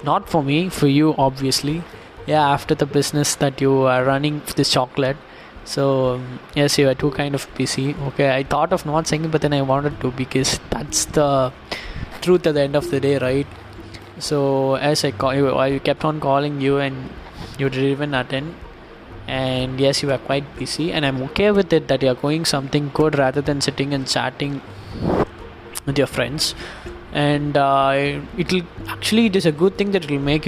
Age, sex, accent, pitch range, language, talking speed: 20-39, male, native, 130-150 Hz, Tamil, 195 wpm